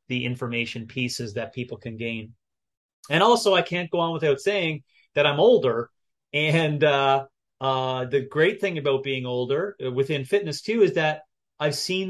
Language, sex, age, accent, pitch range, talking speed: English, male, 30-49, American, 125-155 Hz, 170 wpm